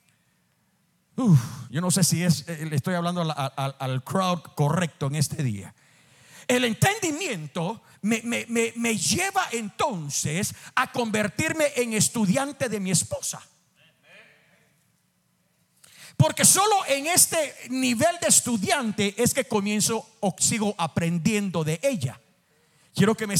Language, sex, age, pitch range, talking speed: Spanish, male, 50-69, 175-245 Hz, 125 wpm